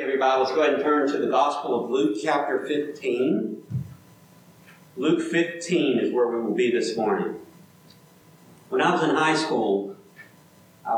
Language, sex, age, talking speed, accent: English, male, 50-69, 160 wpm, American